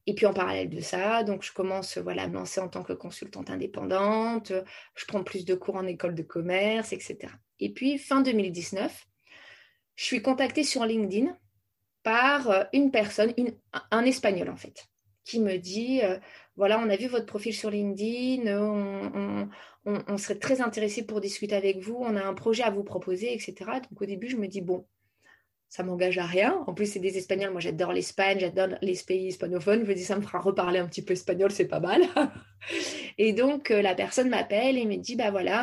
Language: French